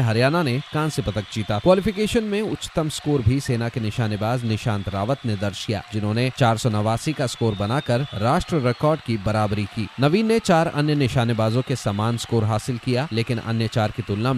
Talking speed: 185 wpm